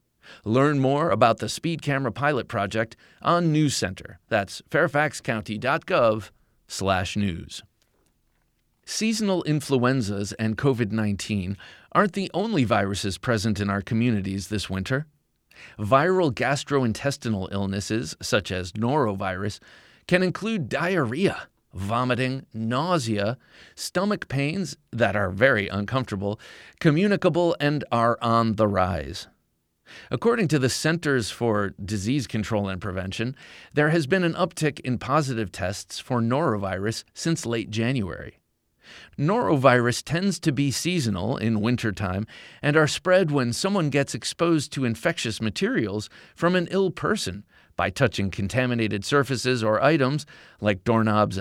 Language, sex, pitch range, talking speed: English, male, 105-150 Hz, 120 wpm